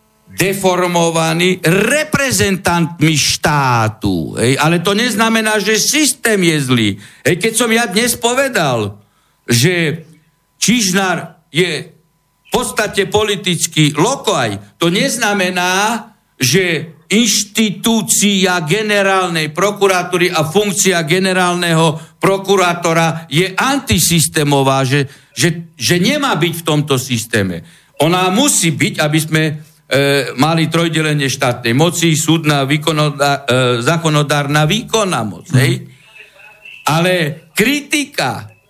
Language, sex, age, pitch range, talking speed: Slovak, male, 60-79, 150-205 Hz, 100 wpm